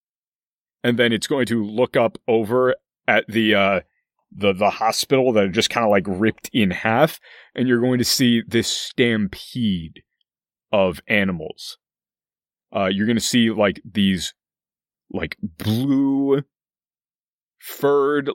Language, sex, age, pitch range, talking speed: English, male, 30-49, 100-125 Hz, 135 wpm